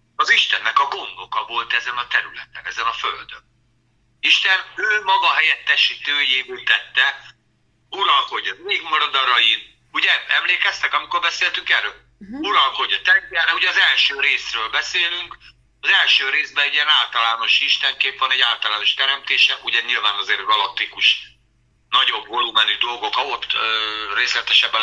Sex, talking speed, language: male, 125 wpm, Hungarian